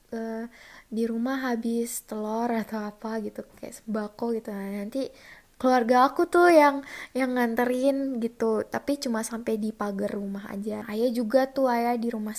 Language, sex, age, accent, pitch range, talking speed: Indonesian, female, 20-39, native, 220-260 Hz, 160 wpm